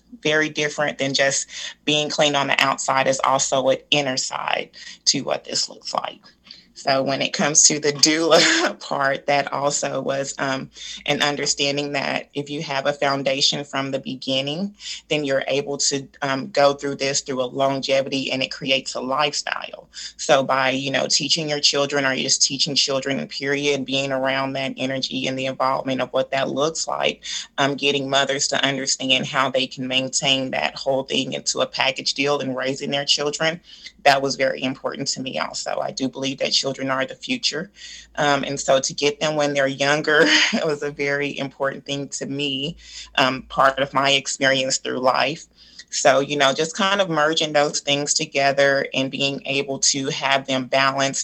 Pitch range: 135-145 Hz